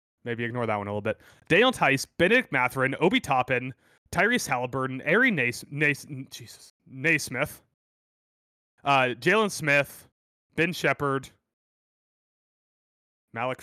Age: 30-49